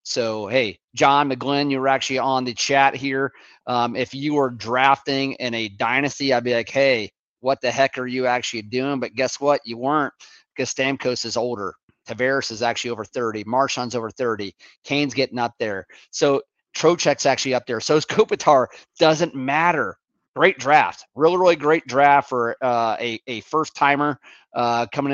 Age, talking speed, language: 30-49, 180 wpm, English